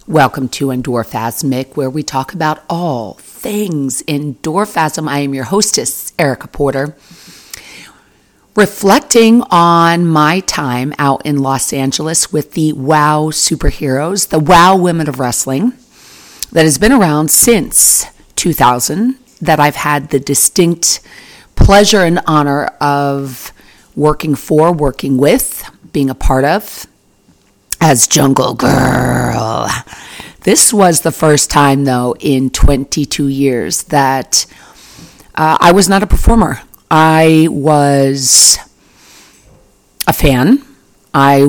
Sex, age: female, 40-59